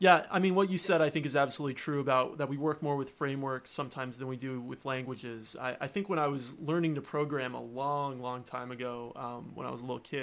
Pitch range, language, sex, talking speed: 125-150 Hz, English, male, 260 wpm